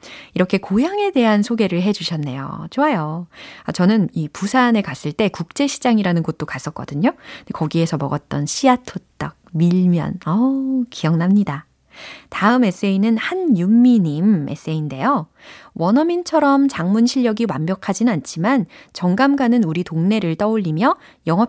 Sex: female